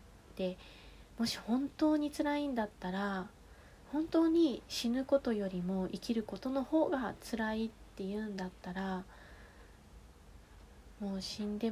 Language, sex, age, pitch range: Japanese, female, 20-39, 175-215 Hz